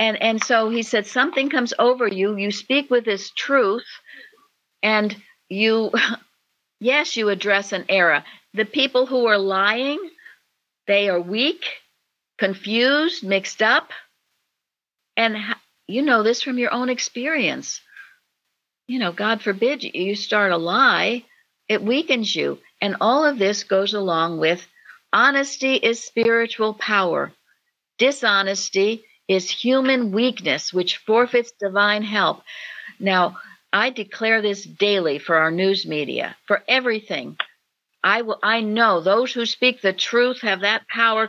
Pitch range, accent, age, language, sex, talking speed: 195-245 Hz, American, 60-79, English, female, 135 wpm